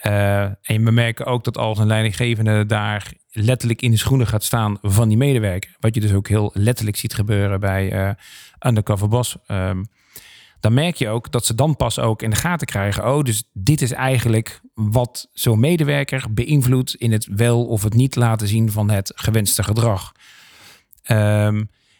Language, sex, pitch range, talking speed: Dutch, male, 105-130 Hz, 185 wpm